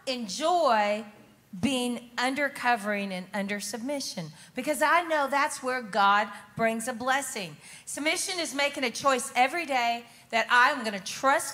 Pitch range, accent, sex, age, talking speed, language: 220-285 Hz, American, female, 40-59, 145 wpm, English